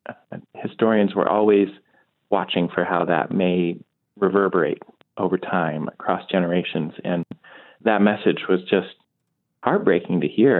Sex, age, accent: male, 30-49, American